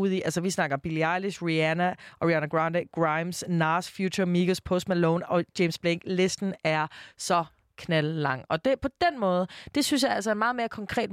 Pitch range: 165-205 Hz